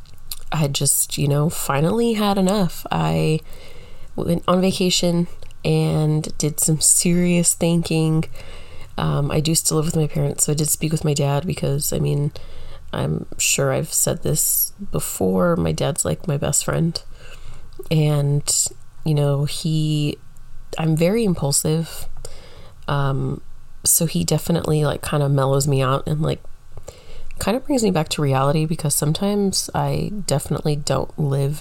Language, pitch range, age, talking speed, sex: English, 135-165 Hz, 30-49, 150 wpm, female